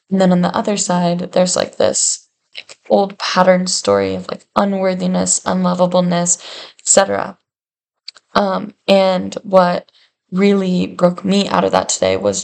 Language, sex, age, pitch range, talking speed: English, female, 10-29, 175-190 Hz, 140 wpm